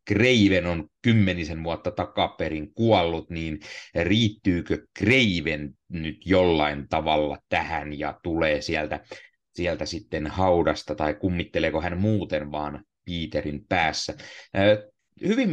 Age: 30-49